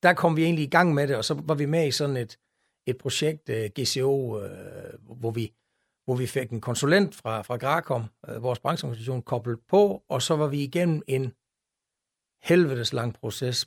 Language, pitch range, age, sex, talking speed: Danish, 125-155 Hz, 60-79, male, 195 wpm